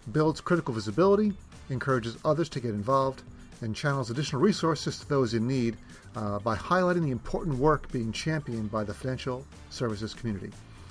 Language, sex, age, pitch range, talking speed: English, male, 40-59, 115-140 Hz, 160 wpm